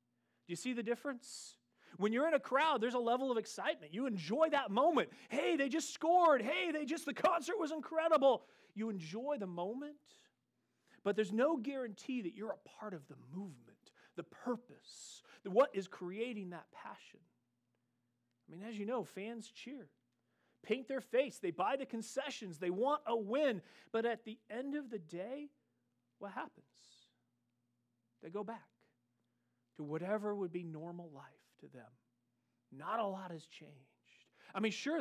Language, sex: English, male